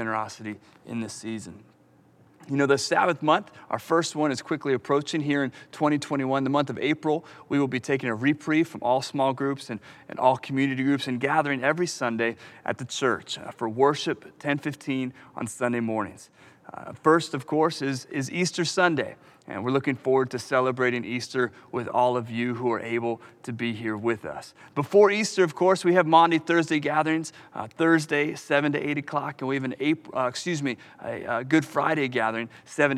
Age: 30-49